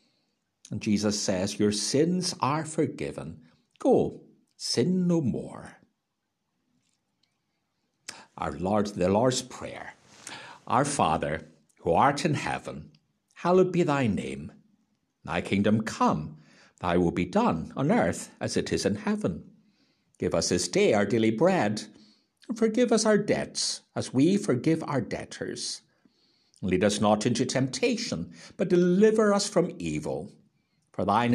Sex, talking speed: male, 130 wpm